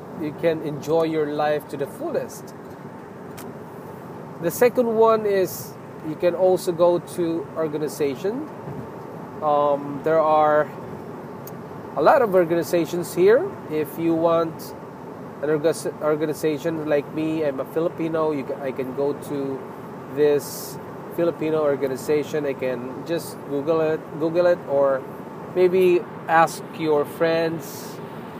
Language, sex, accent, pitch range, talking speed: English, male, Filipino, 145-175 Hz, 120 wpm